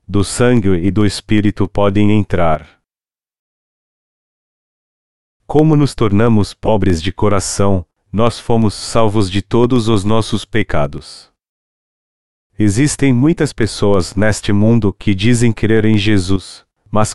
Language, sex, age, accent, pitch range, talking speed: Portuguese, male, 40-59, Brazilian, 95-110 Hz, 110 wpm